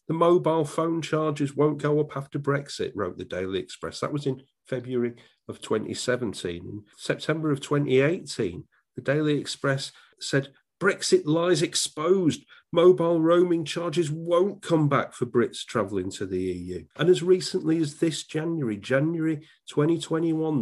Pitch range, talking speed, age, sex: 125-160 Hz, 145 wpm, 40-59, male